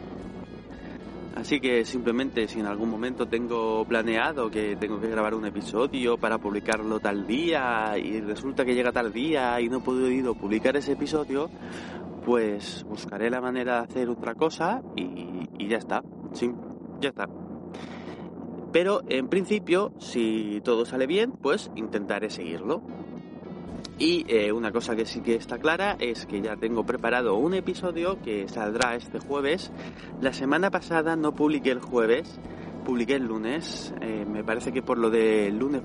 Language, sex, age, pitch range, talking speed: Spanish, male, 30-49, 110-135 Hz, 160 wpm